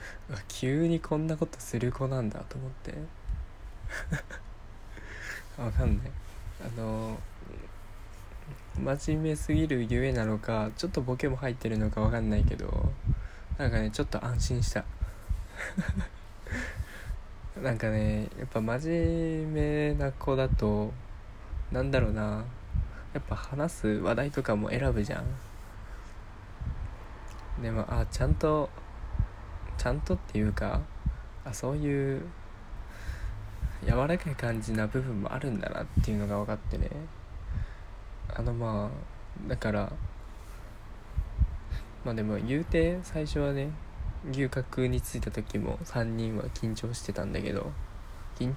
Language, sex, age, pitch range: Japanese, male, 20-39, 100-130 Hz